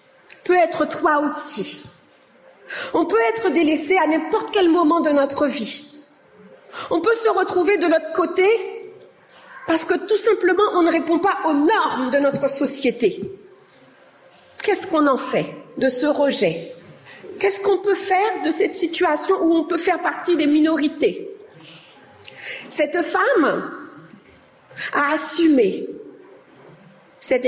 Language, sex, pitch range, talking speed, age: French, female, 285-400 Hz, 135 wpm, 40-59